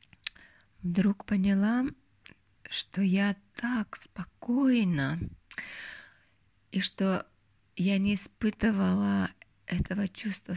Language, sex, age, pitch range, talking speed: Russian, female, 20-39, 175-210 Hz, 75 wpm